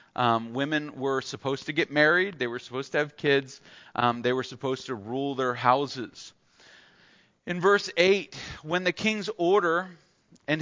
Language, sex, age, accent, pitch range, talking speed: English, male, 40-59, American, 145-205 Hz, 165 wpm